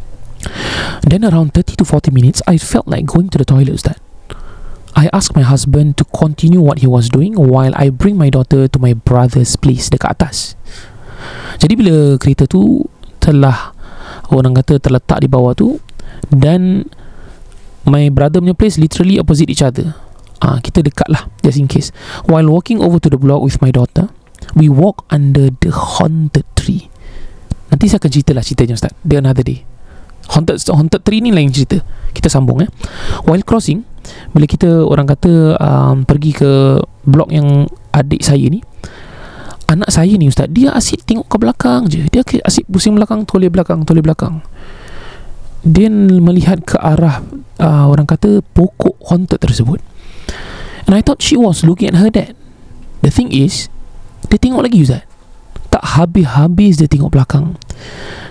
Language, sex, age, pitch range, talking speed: Malay, male, 20-39, 135-180 Hz, 165 wpm